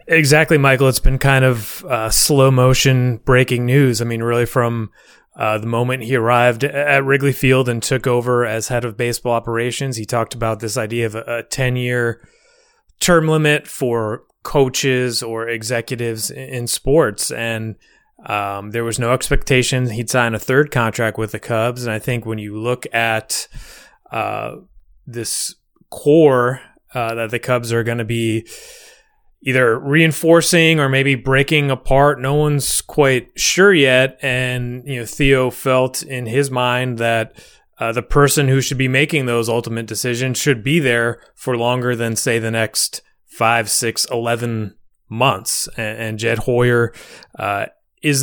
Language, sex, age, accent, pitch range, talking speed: English, male, 30-49, American, 115-135 Hz, 160 wpm